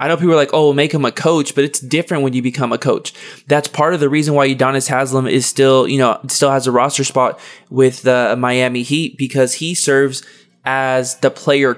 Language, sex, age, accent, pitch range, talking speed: English, male, 20-39, American, 130-155 Hz, 235 wpm